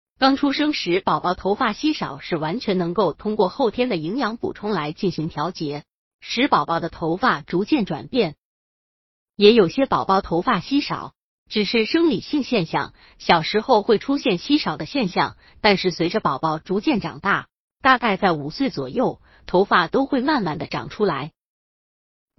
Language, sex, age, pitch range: Chinese, female, 30-49, 170-255 Hz